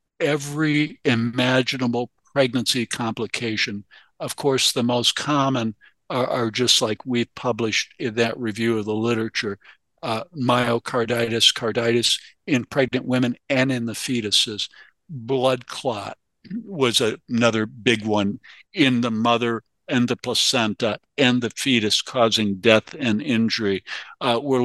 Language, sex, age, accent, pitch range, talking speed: English, male, 60-79, American, 110-130 Hz, 130 wpm